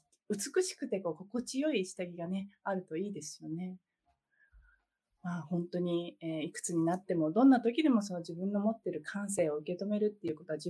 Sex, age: female, 20-39